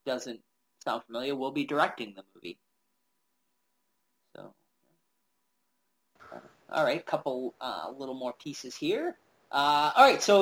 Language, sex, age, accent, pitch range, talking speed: English, male, 20-39, American, 140-185 Hz, 120 wpm